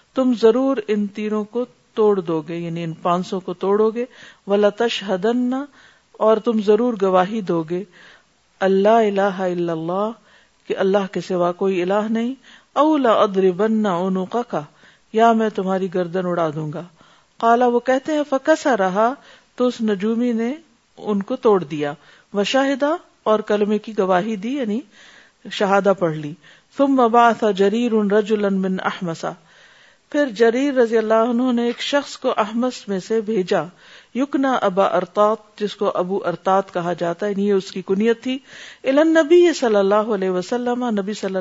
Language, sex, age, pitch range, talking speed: Urdu, female, 50-69, 190-235 Hz, 155 wpm